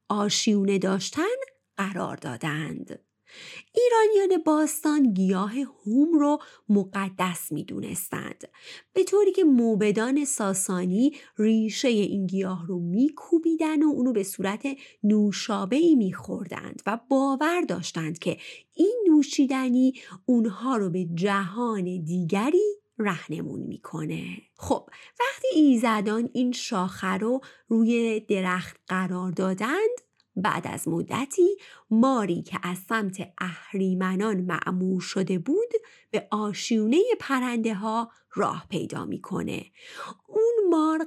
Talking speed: 105 wpm